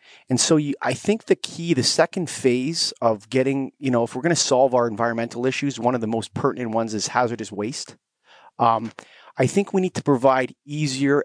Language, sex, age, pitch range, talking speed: English, male, 30-49, 115-145 Hz, 195 wpm